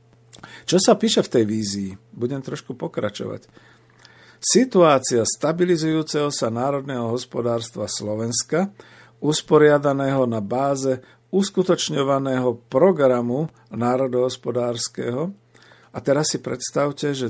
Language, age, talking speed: Slovak, 50-69, 90 wpm